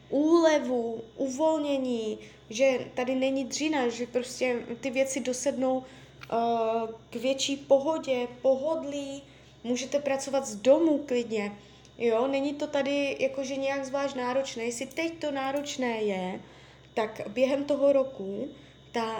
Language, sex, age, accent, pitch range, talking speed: Czech, female, 20-39, native, 220-270 Hz, 120 wpm